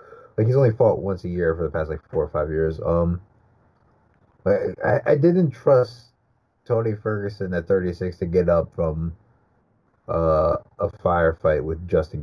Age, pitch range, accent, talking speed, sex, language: 30-49, 90-120 Hz, American, 170 wpm, male, English